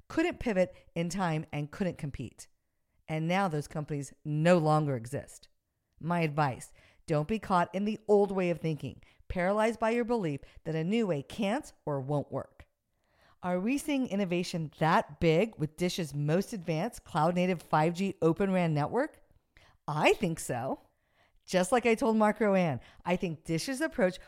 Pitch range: 160-230 Hz